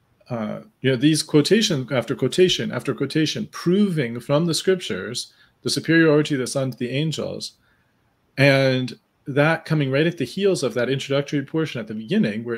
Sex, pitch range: male, 120-155 Hz